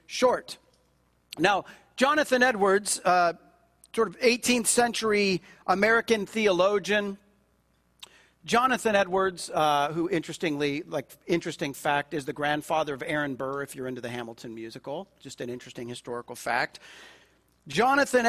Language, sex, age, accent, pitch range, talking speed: English, male, 40-59, American, 155-235 Hz, 120 wpm